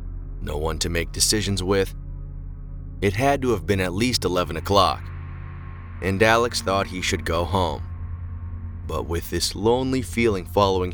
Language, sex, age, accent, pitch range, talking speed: English, male, 30-49, American, 85-110 Hz, 155 wpm